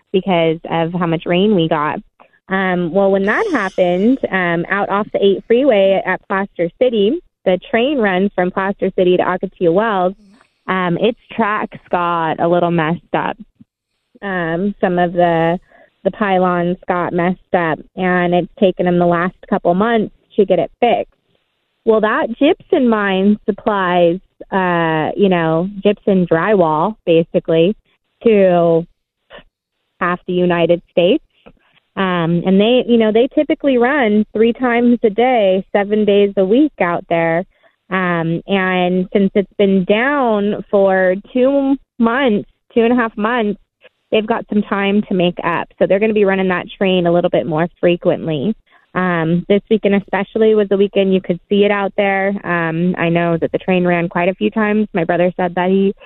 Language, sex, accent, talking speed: English, female, American, 165 wpm